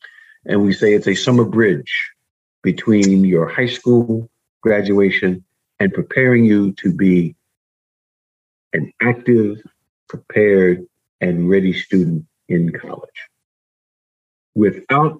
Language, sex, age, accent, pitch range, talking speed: English, male, 50-69, American, 100-130 Hz, 105 wpm